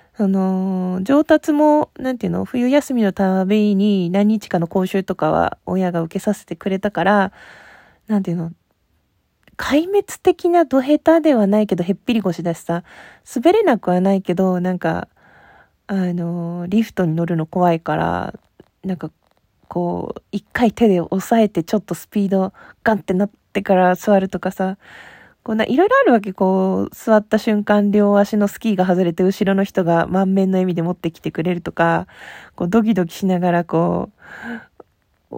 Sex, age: female, 20-39